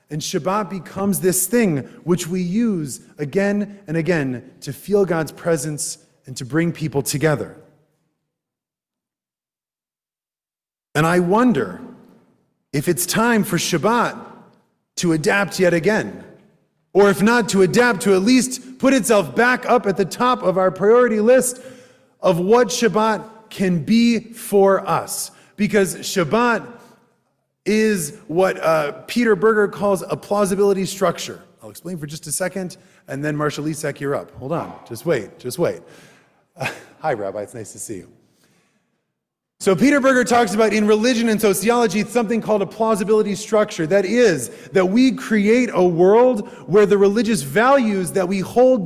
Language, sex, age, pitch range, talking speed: English, male, 30-49, 185-235 Hz, 150 wpm